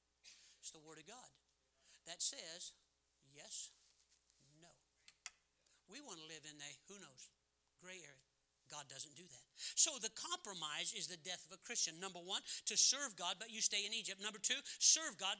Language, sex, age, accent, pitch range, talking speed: English, male, 60-79, American, 130-200 Hz, 175 wpm